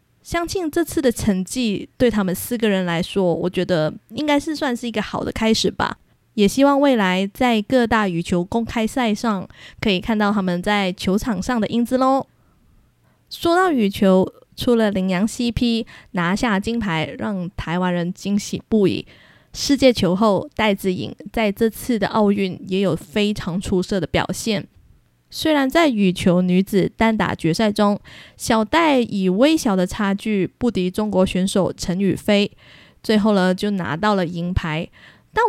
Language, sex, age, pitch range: Chinese, female, 20-39, 190-240 Hz